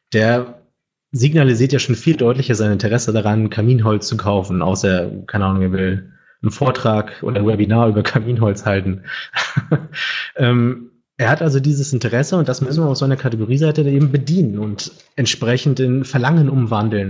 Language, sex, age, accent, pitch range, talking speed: German, male, 30-49, German, 110-135 Hz, 160 wpm